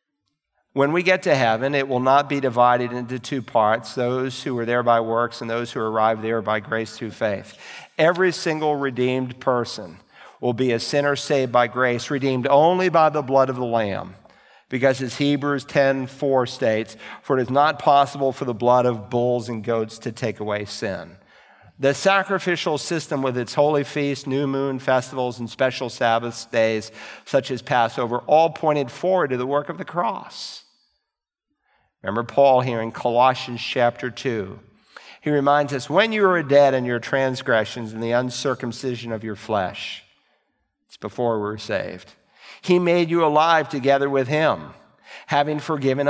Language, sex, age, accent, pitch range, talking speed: English, male, 50-69, American, 120-150 Hz, 170 wpm